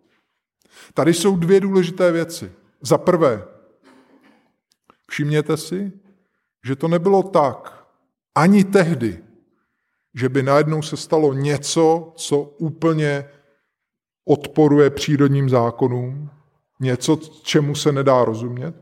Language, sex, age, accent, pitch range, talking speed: Czech, male, 20-39, native, 130-165 Hz, 100 wpm